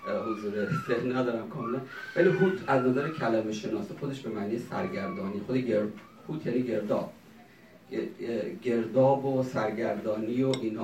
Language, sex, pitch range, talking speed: English, male, 115-155 Hz, 135 wpm